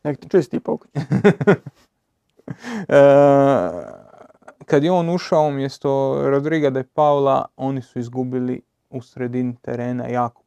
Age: 30-49